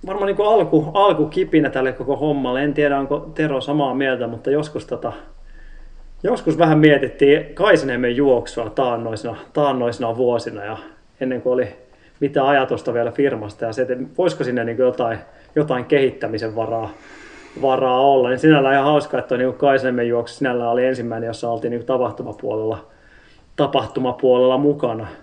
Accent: native